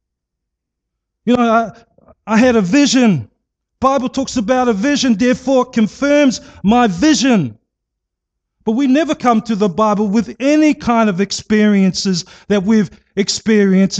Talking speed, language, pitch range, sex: 135 wpm, English, 145-215 Hz, male